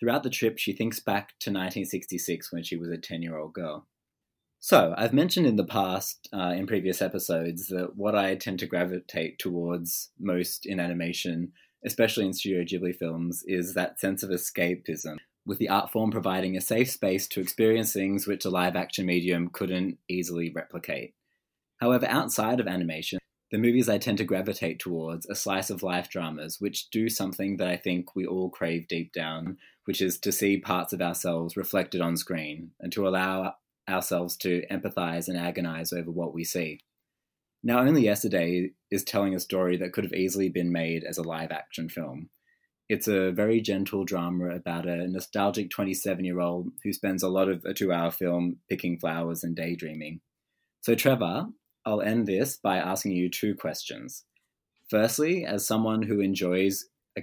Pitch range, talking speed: 85-100 Hz, 170 wpm